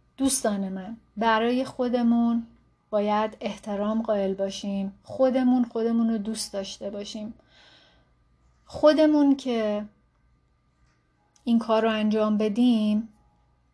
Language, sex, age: Persian, female, 30-49